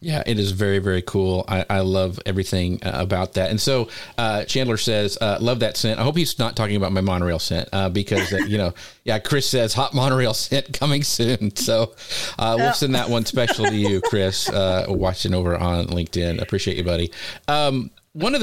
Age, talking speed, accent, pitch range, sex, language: 40-59, 210 wpm, American, 100-130 Hz, male, English